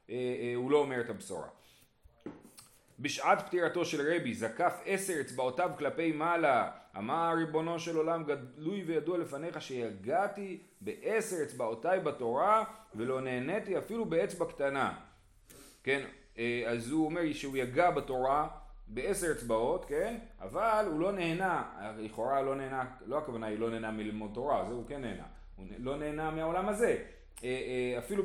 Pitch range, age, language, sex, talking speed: 120-165 Hz, 30-49, Hebrew, male, 135 wpm